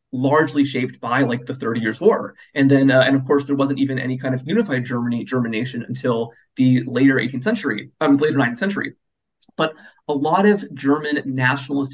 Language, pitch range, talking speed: English, 130-150 Hz, 195 wpm